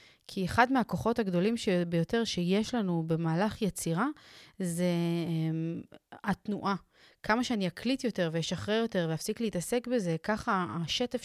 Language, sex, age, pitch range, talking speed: Hebrew, female, 30-49, 170-205 Hz, 130 wpm